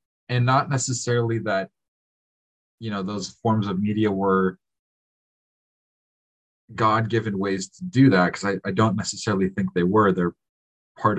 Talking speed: 140 wpm